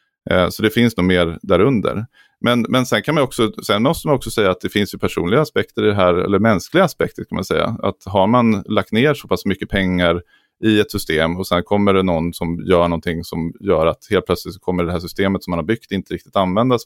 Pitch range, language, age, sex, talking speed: 85-105 Hz, Swedish, 30-49, male, 245 wpm